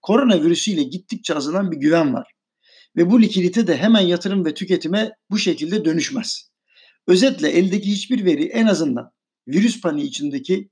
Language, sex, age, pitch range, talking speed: Turkish, male, 50-69, 165-260 Hz, 150 wpm